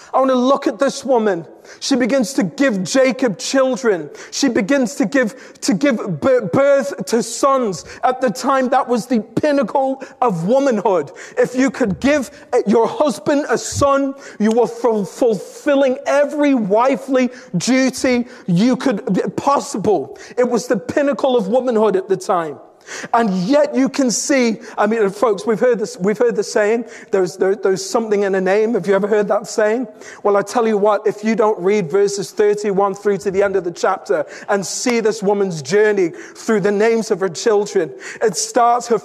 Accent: British